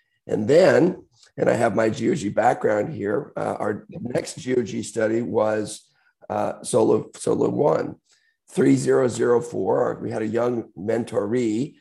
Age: 50-69